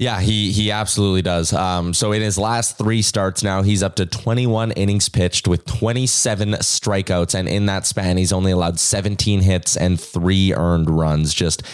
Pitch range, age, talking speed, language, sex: 90-115 Hz, 20-39, 185 wpm, English, male